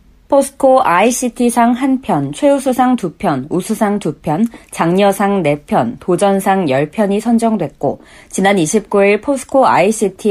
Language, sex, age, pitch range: Korean, female, 40-59, 185-240 Hz